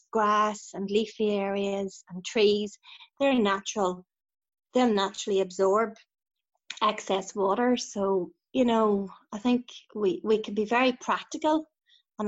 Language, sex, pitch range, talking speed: English, female, 195-235 Hz, 125 wpm